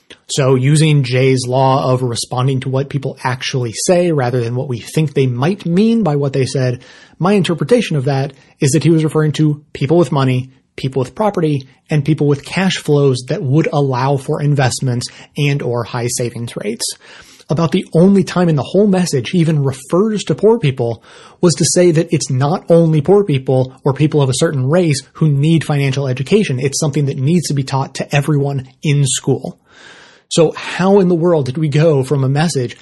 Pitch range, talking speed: 135-165 Hz, 200 wpm